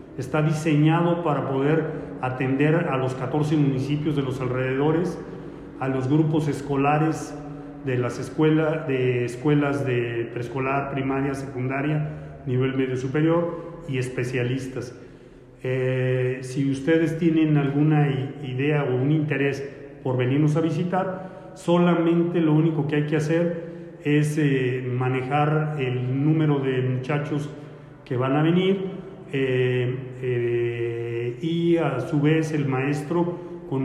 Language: Spanish